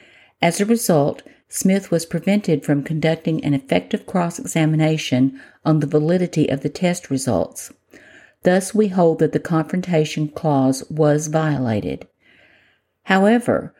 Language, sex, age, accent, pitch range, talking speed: English, female, 50-69, American, 145-180 Hz, 120 wpm